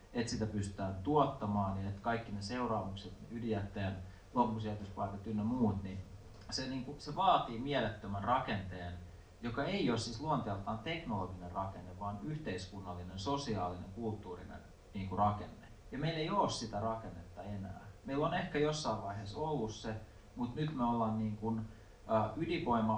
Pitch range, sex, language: 90-110 Hz, male, Finnish